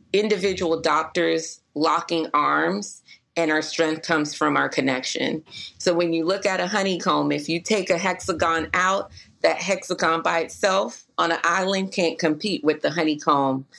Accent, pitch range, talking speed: American, 155-185 Hz, 155 wpm